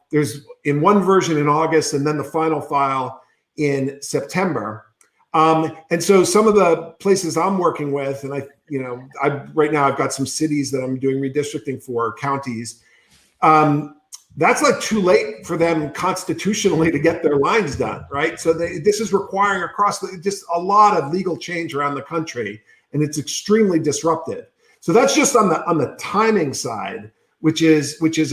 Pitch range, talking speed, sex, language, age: 140-190 Hz, 185 wpm, male, English, 50-69